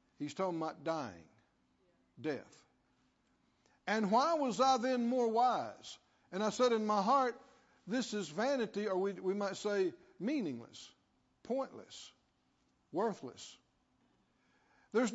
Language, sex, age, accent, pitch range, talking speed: English, male, 60-79, American, 190-250 Hz, 120 wpm